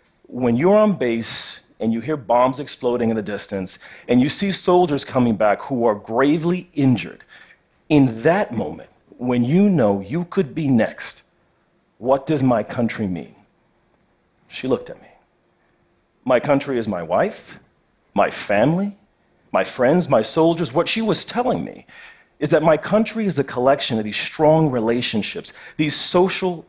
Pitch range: 120-185 Hz